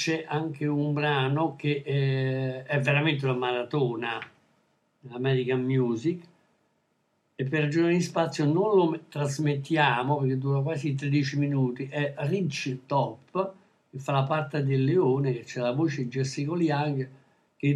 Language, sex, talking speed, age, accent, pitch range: Italian, male, 135 wpm, 60-79, native, 135-165 Hz